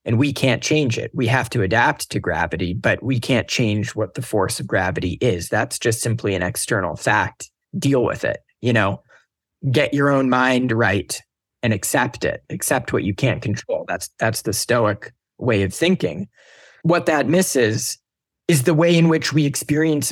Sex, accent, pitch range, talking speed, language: male, American, 110-140 Hz, 185 wpm, English